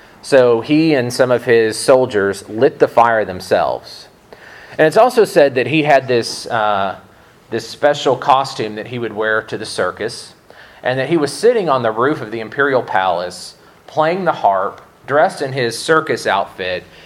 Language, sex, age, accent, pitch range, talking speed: English, male, 40-59, American, 110-145 Hz, 175 wpm